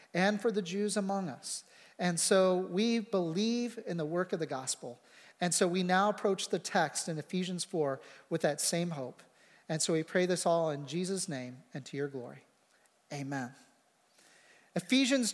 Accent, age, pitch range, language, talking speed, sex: American, 40-59, 185-225 Hz, English, 175 wpm, male